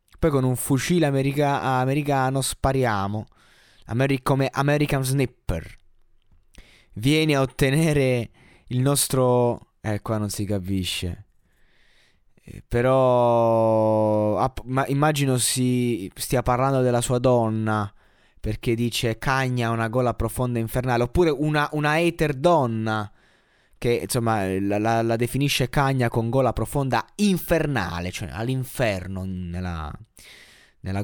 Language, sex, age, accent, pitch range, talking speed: Italian, male, 20-39, native, 110-140 Hz, 115 wpm